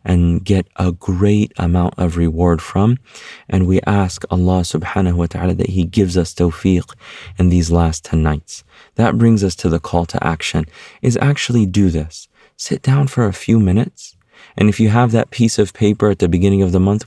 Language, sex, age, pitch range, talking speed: English, male, 30-49, 85-100 Hz, 200 wpm